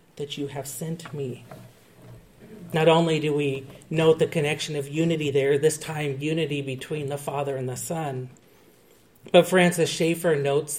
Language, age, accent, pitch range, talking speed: English, 40-59, American, 135-165 Hz, 155 wpm